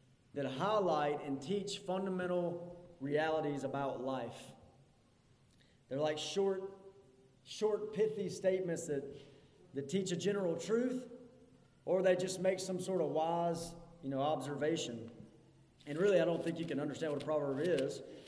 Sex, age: male, 30-49